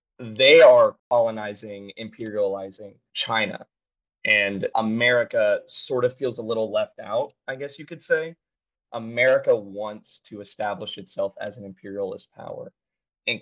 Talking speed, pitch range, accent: 130 wpm, 105-125 Hz, American